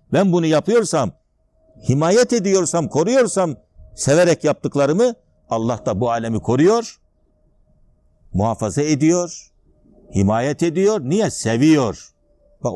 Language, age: Turkish, 60-79